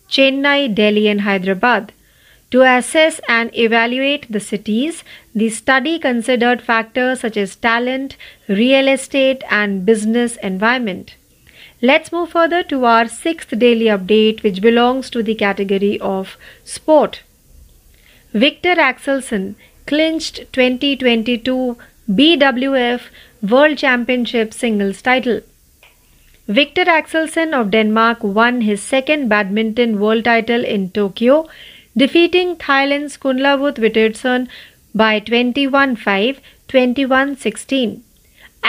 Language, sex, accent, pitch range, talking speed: Marathi, female, native, 220-275 Hz, 100 wpm